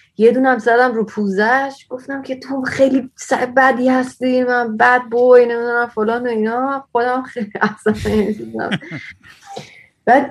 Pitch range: 185-245 Hz